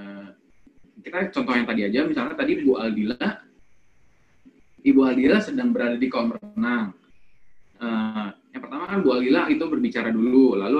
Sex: male